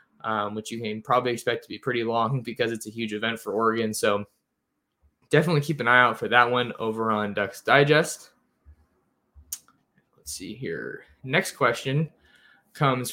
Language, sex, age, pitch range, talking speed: English, male, 20-39, 115-145 Hz, 165 wpm